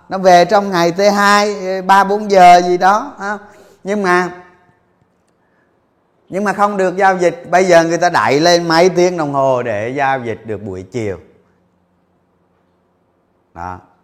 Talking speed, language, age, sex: 155 wpm, Vietnamese, 20-39, male